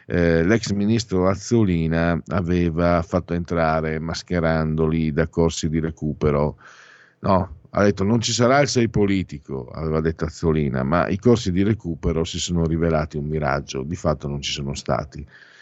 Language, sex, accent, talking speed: Italian, male, native, 155 wpm